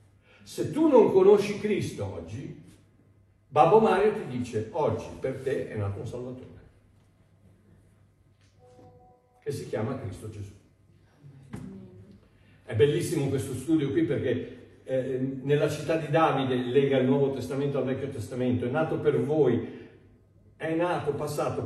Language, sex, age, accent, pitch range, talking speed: Italian, male, 60-79, native, 110-175 Hz, 125 wpm